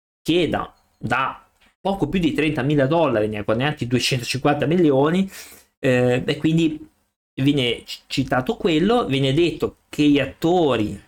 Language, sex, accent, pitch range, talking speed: Italian, male, native, 110-140 Hz, 120 wpm